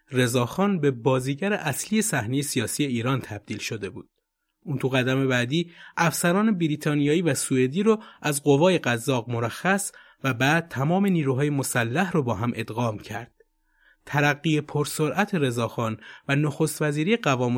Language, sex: Persian, male